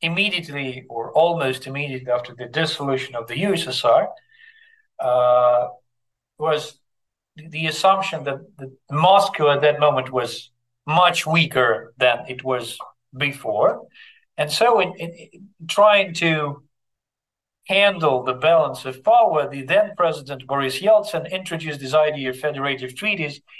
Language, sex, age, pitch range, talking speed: English, male, 50-69, 125-170 Hz, 125 wpm